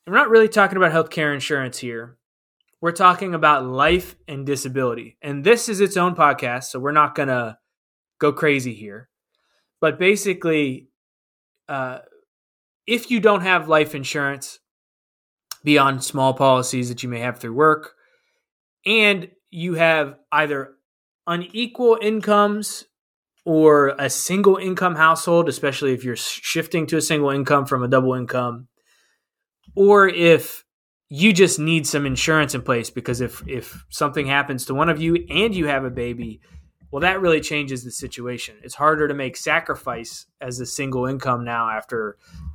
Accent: American